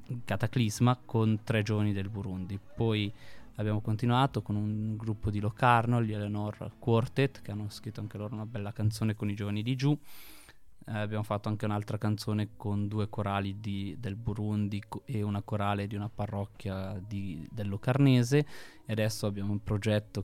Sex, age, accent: male, 20-39, native